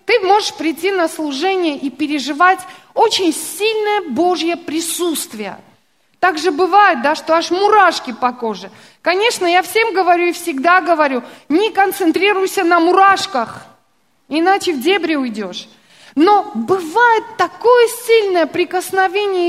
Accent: native